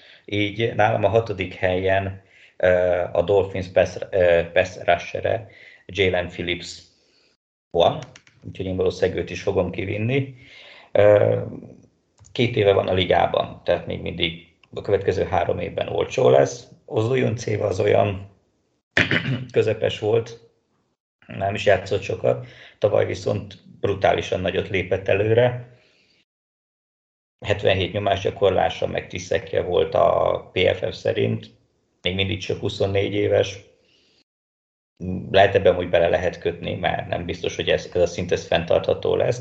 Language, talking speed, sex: Hungarian, 120 wpm, male